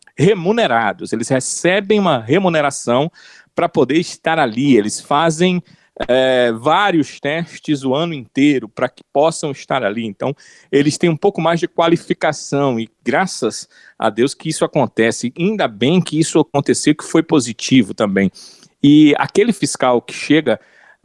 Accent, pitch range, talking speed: Brazilian, 125-170 Hz, 145 wpm